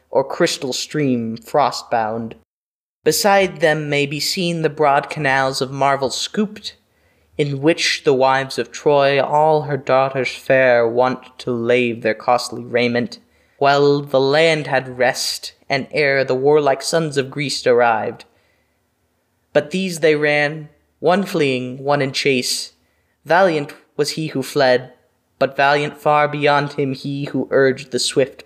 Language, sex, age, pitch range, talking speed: English, male, 20-39, 130-155 Hz, 150 wpm